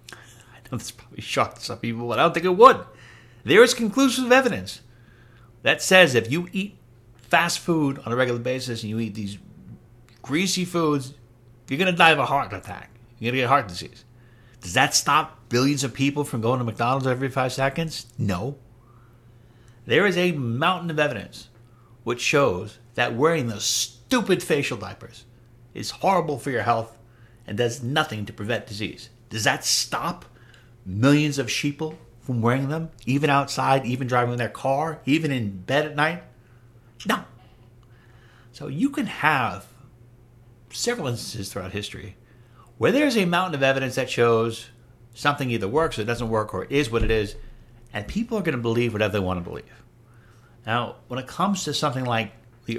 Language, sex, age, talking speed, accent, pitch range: English, male, 60-79, 175 wpm, American, 115-140 Hz